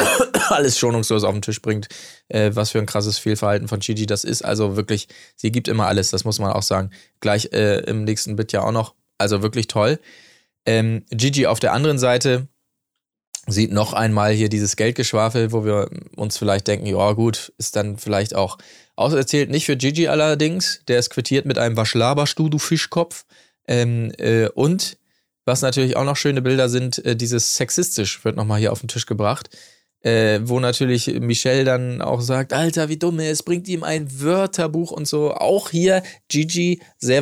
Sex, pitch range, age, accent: male, 105-130 Hz, 20-39, German